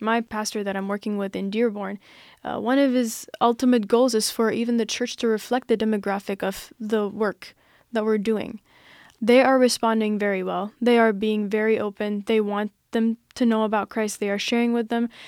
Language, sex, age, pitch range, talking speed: English, female, 10-29, 215-240 Hz, 200 wpm